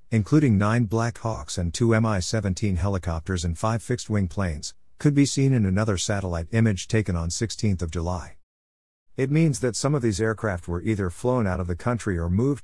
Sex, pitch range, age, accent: male, 90-110 Hz, 50-69, American